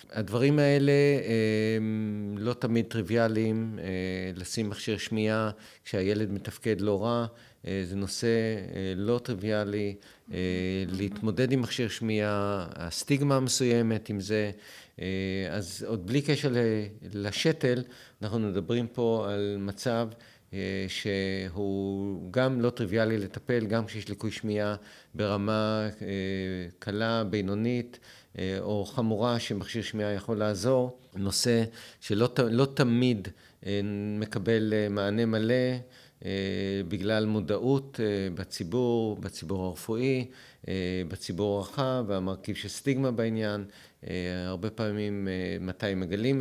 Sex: male